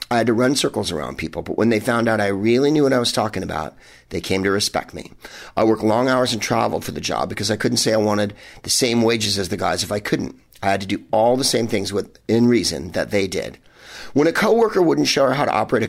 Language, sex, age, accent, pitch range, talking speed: English, male, 50-69, American, 100-125 Hz, 270 wpm